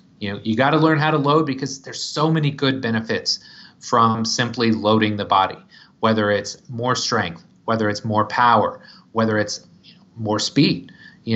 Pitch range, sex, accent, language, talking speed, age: 110-150 Hz, male, American, English, 175 wpm, 30-49